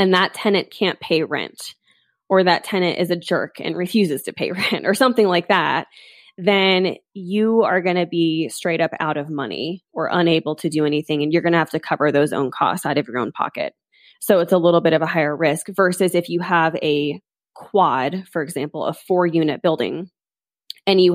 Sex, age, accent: female, 20-39, American